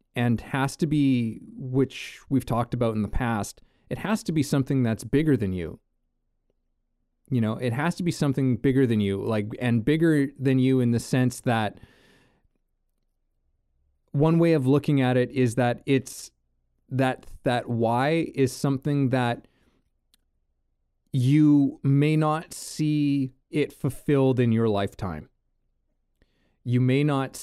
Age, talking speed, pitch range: 30-49, 145 wpm, 115-140 Hz